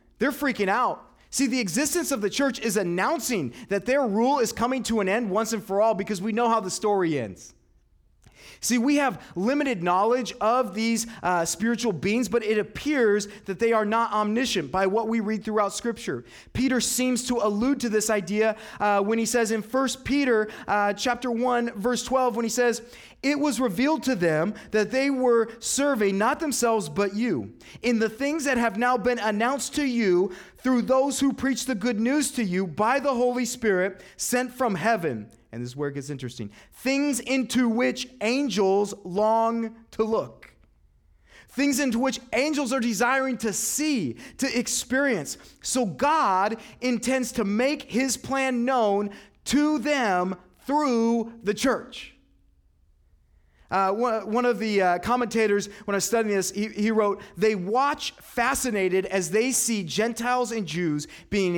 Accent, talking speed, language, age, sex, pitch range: American, 170 wpm, English, 30-49, male, 195-250 Hz